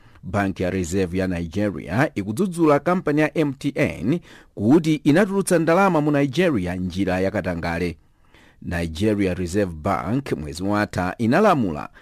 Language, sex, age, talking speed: English, male, 50-69, 110 wpm